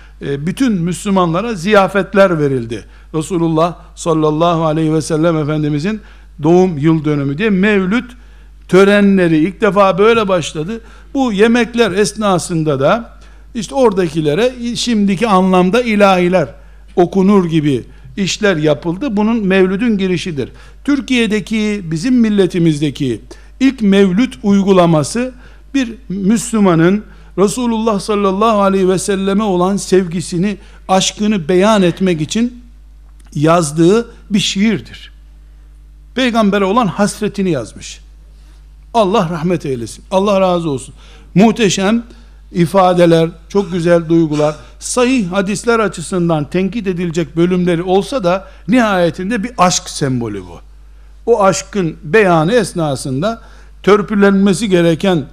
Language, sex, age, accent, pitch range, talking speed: Turkish, male, 60-79, native, 165-210 Hz, 100 wpm